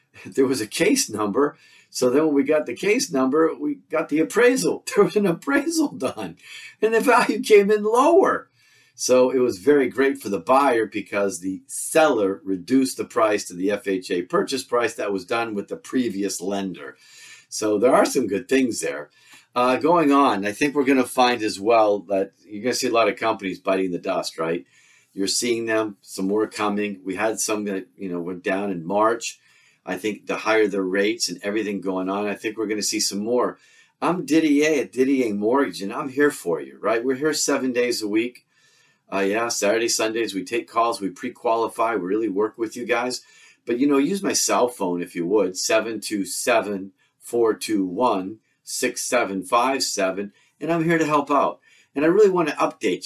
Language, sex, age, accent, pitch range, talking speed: English, male, 50-69, American, 100-145 Hz, 195 wpm